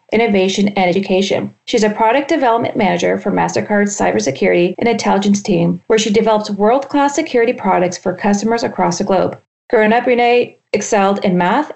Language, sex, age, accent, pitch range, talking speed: English, female, 40-59, American, 190-250 Hz, 165 wpm